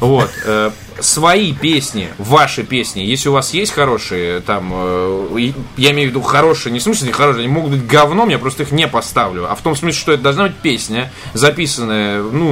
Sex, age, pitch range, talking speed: male, 20-39, 110-150 Hz, 195 wpm